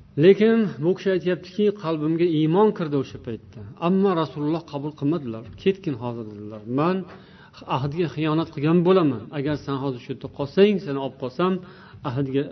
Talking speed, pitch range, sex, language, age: 115 wpm, 135-165 Hz, male, Russian, 50-69